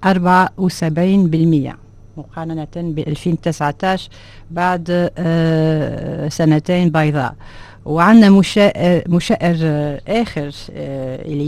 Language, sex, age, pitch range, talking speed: Arabic, female, 50-69, 150-185 Hz, 65 wpm